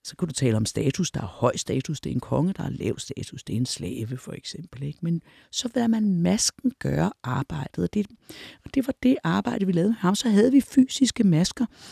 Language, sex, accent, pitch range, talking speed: Danish, female, native, 150-225 Hz, 240 wpm